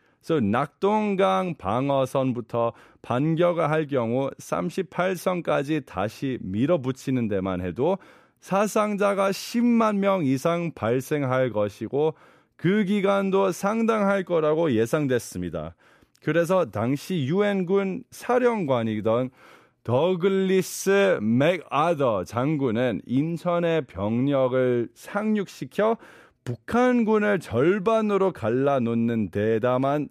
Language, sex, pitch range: Korean, male, 125-195 Hz